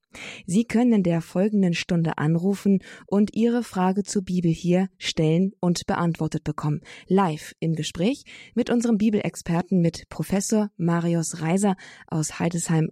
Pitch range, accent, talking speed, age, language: 165-200 Hz, German, 135 wpm, 20-39, German